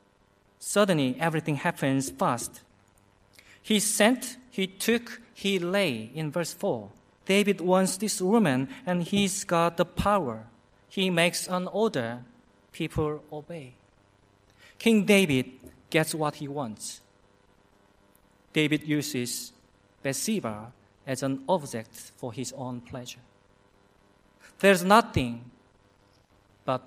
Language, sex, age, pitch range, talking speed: English, male, 40-59, 100-170 Hz, 105 wpm